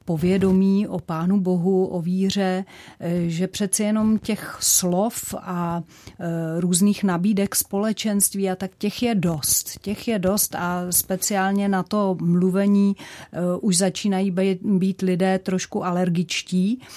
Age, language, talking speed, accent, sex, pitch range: 40-59, Czech, 120 wpm, native, female, 175-195 Hz